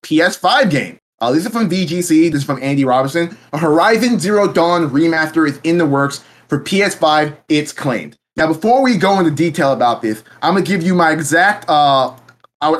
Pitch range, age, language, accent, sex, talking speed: 140-190 Hz, 20-39, English, American, male, 190 wpm